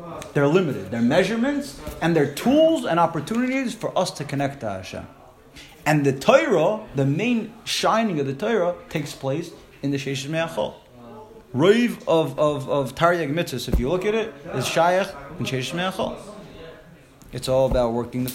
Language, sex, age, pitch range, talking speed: English, male, 30-49, 130-175 Hz, 165 wpm